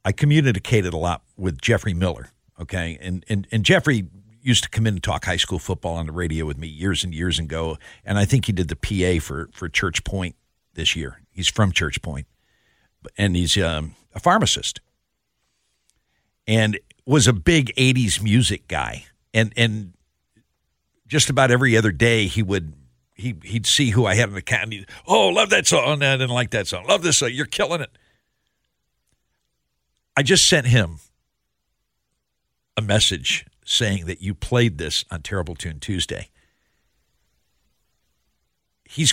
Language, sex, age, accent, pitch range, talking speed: English, male, 60-79, American, 85-130 Hz, 170 wpm